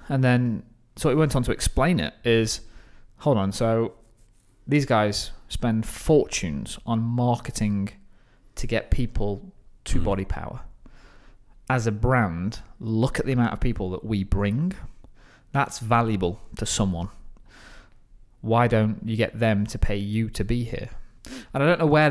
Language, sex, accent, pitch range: English, male, British, 105-125 Hz